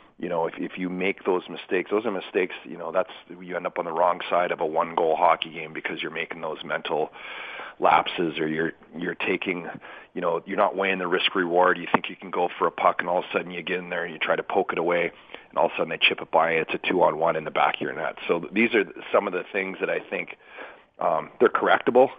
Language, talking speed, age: English, 270 wpm, 40-59